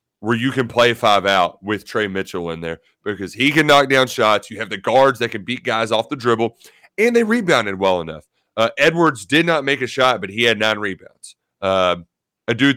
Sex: male